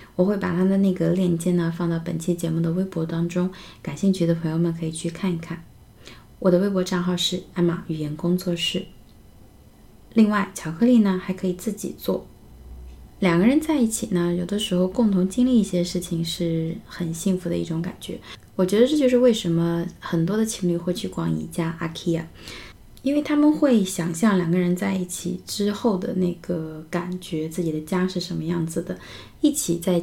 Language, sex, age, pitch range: Chinese, female, 20-39, 170-195 Hz